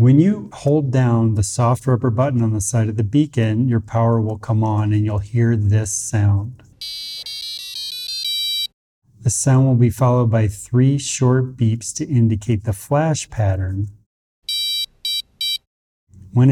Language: English